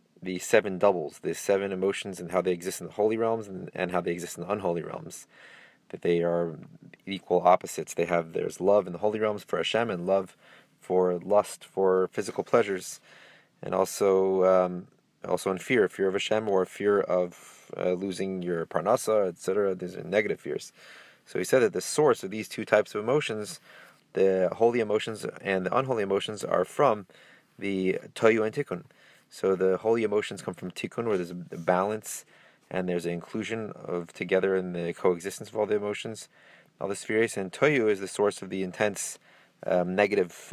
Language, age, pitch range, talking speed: English, 30-49, 90-105 Hz, 190 wpm